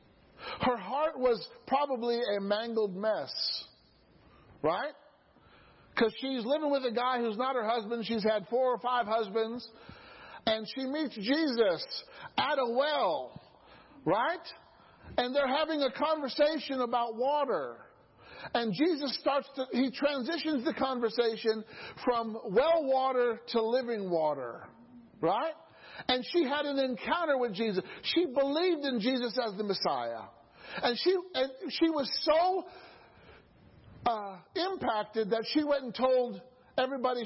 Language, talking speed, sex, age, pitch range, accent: English, 130 wpm, male, 50-69, 220-280 Hz, American